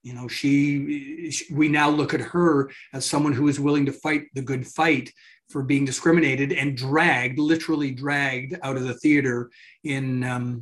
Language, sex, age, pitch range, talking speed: English, male, 30-49, 130-155 Hz, 175 wpm